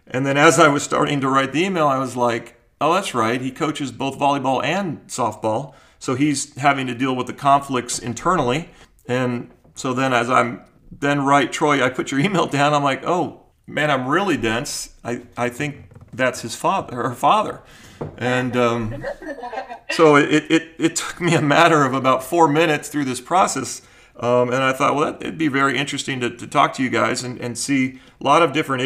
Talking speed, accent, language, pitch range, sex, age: 210 wpm, American, English, 120-150 Hz, male, 40-59